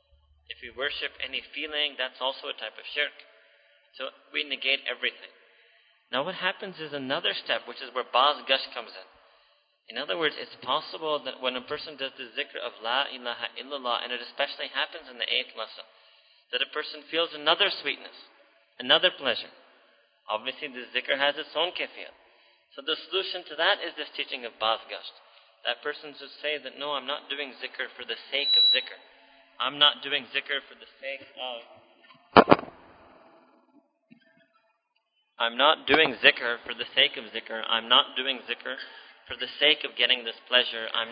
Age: 30-49